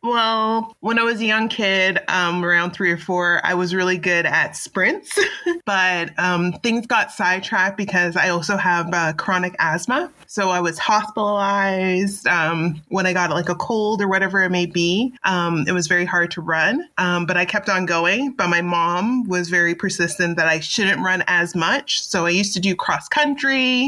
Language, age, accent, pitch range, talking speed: English, 20-39, American, 175-205 Hz, 195 wpm